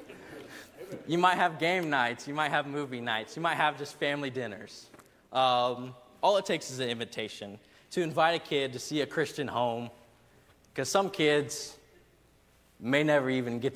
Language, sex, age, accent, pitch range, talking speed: English, male, 20-39, American, 125-170 Hz, 170 wpm